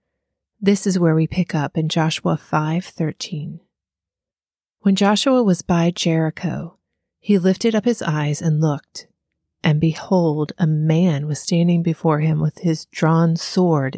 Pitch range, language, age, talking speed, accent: 130-180 Hz, English, 30-49, 140 wpm, American